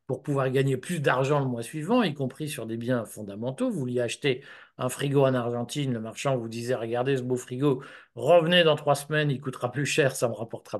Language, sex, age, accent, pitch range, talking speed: French, male, 50-69, French, 125-155 Hz, 220 wpm